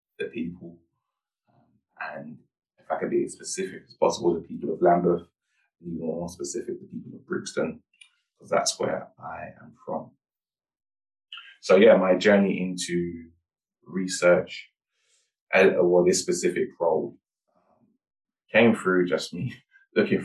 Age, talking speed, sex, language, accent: 20-39, 135 wpm, male, English, British